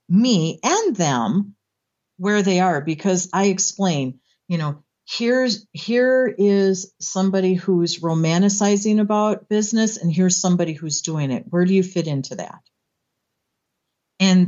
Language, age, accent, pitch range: English, 50-69, American, 170-210 Hz